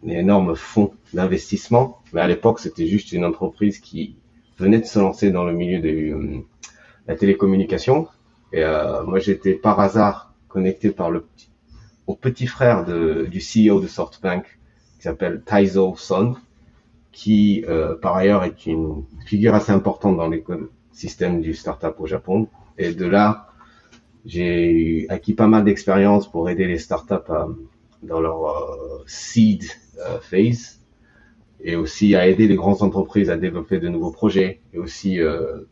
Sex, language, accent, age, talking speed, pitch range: male, French, French, 30-49, 155 wpm, 90-110 Hz